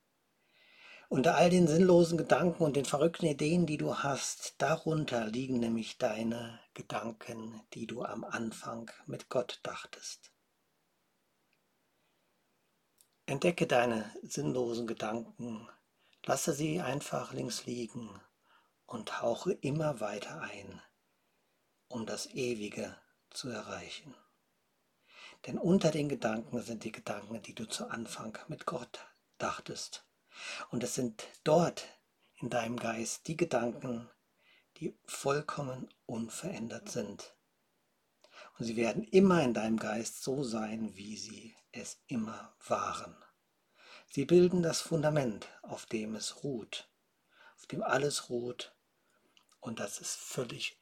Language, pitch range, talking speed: German, 115-155 Hz, 120 wpm